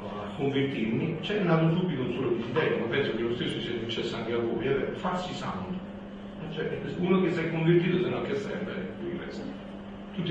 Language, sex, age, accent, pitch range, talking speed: Italian, male, 40-59, native, 145-190 Hz, 210 wpm